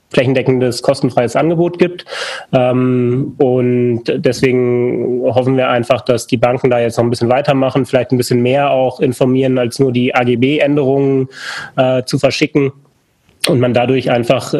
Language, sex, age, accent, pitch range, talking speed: German, male, 30-49, German, 125-140 Hz, 140 wpm